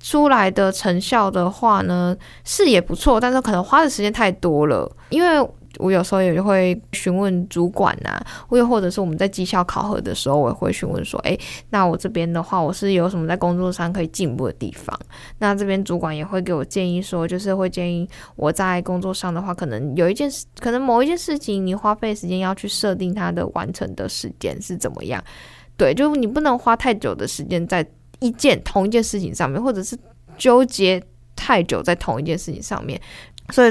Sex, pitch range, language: female, 175-215 Hz, Chinese